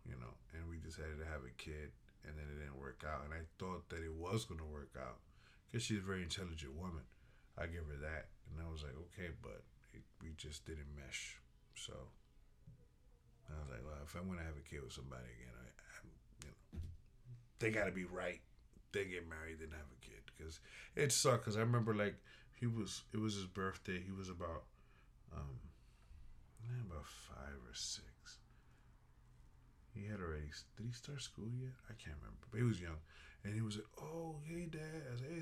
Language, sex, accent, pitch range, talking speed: English, male, American, 80-120 Hz, 205 wpm